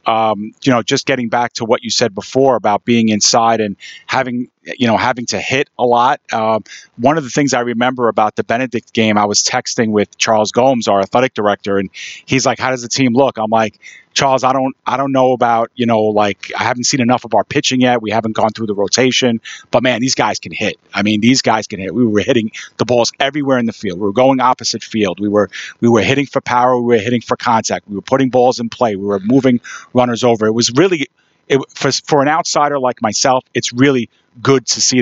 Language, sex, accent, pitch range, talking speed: English, male, American, 115-140 Hz, 240 wpm